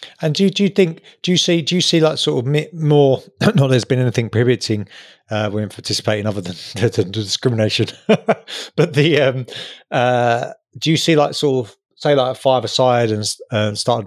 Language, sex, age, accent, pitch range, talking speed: English, male, 20-39, British, 105-125 Hz, 195 wpm